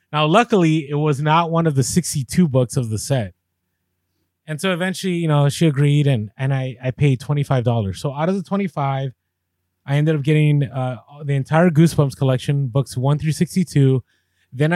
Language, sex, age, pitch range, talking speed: English, male, 20-39, 125-155 Hz, 185 wpm